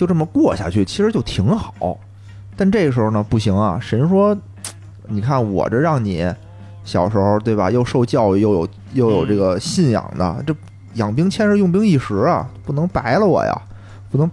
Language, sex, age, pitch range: Chinese, male, 30-49, 100-150 Hz